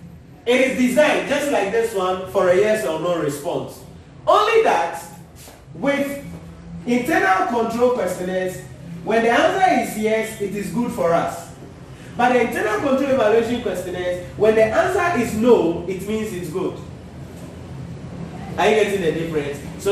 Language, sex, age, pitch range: English, male, 40-59, 180-255 Hz